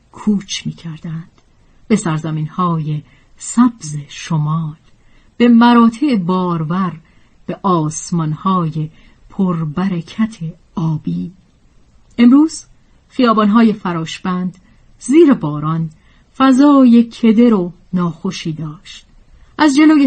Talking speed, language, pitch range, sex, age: 85 wpm, Persian, 165-235 Hz, female, 40-59